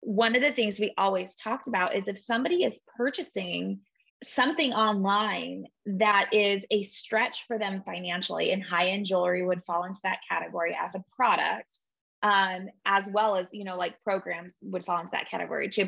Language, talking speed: English, 180 wpm